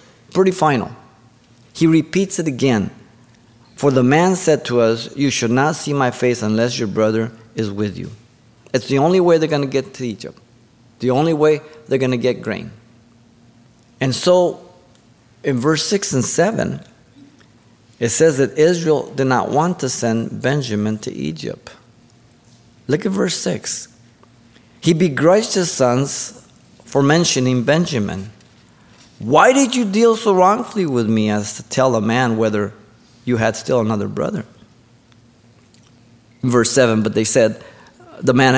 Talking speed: 155 wpm